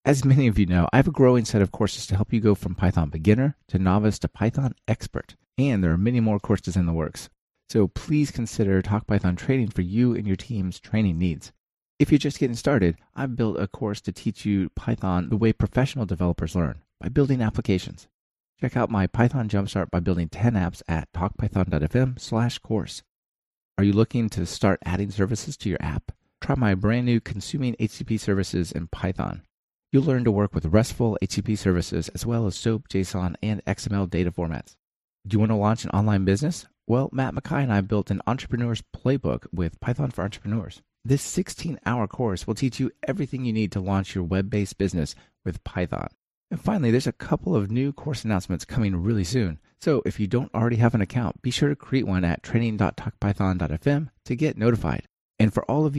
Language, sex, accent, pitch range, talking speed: English, male, American, 95-125 Hz, 200 wpm